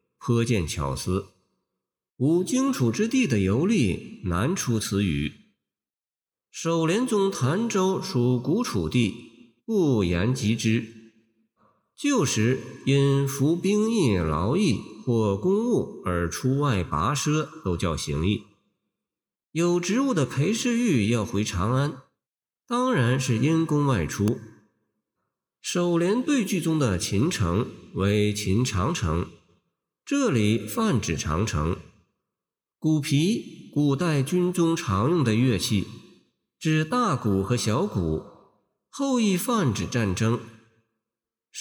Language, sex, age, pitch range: Chinese, male, 50-69, 105-175 Hz